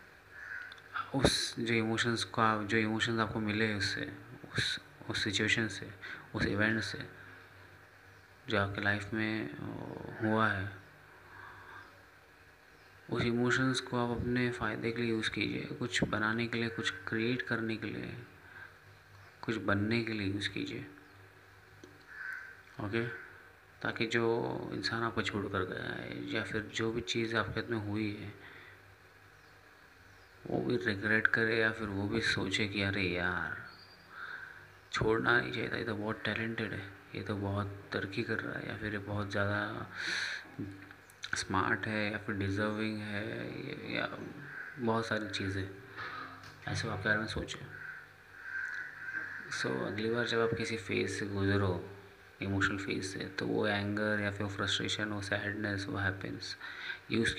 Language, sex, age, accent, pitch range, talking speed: Hindi, male, 30-49, native, 100-115 Hz, 145 wpm